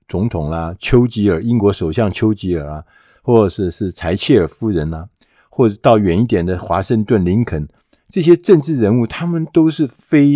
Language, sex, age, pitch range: Chinese, male, 50-69, 100-160 Hz